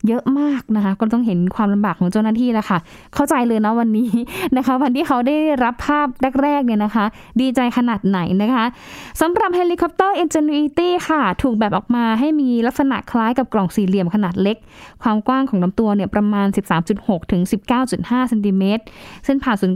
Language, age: Thai, 20-39